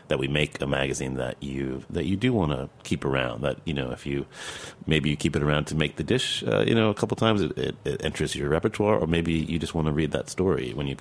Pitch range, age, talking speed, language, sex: 70-80 Hz, 30-49, 280 wpm, English, male